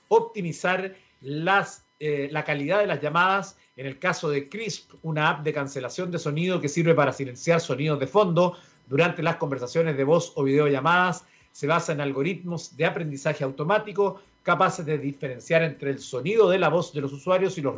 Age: 50-69